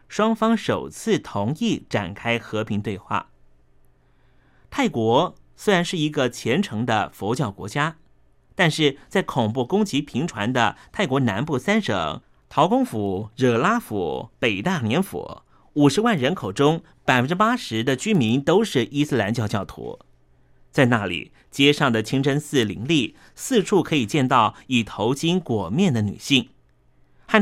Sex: male